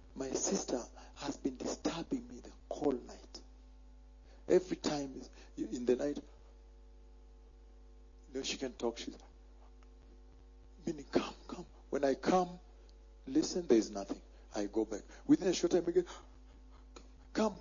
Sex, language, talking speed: male, English, 135 wpm